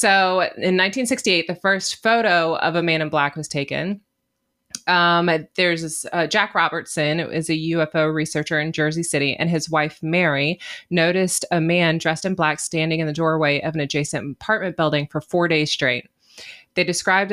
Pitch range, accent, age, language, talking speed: 150-175 Hz, American, 20-39, English, 180 wpm